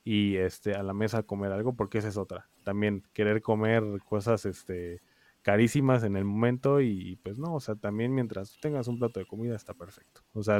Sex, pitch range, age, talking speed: male, 100-120 Hz, 20-39, 205 wpm